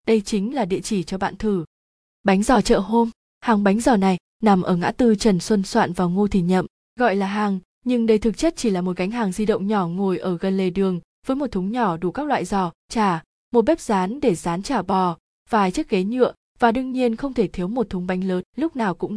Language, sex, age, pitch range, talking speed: Vietnamese, female, 20-39, 185-230 Hz, 250 wpm